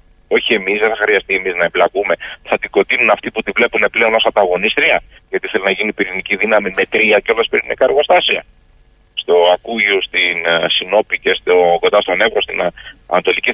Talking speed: 175 wpm